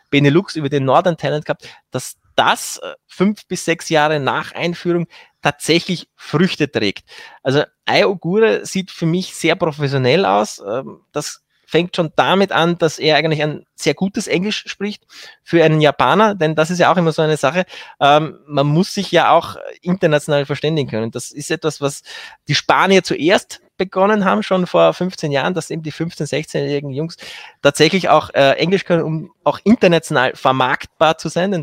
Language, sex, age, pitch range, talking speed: German, male, 20-39, 145-180 Hz, 170 wpm